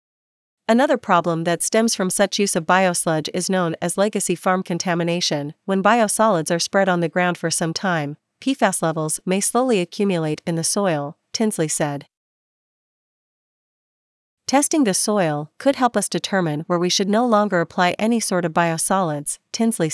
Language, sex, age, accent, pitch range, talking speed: English, female, 40-59, American, 165-205 Hz, 160 wpm